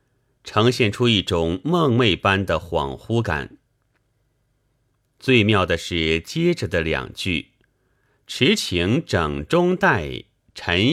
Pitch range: 90-125 Hz